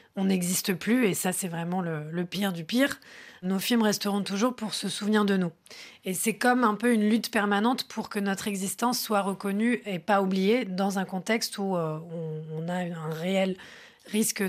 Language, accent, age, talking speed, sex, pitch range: French, French, 20-39, 205 wpm, female, 185-220 Hz